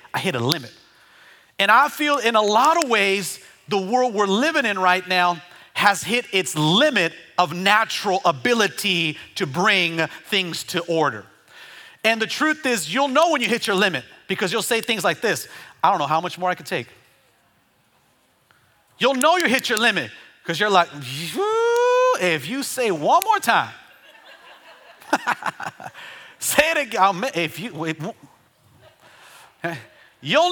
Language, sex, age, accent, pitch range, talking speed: English, male, 30-49, American, 180-250 Hz, 160 wpm